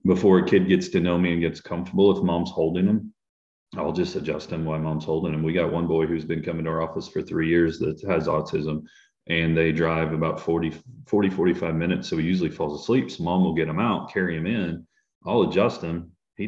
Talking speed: 235 wpm